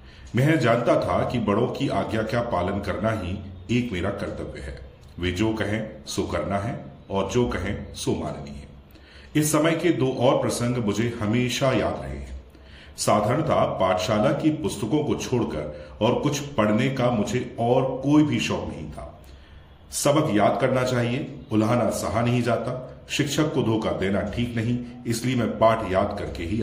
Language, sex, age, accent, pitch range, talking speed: Hindi, male, 40-59, native, 85-120 Hz, 170 wpm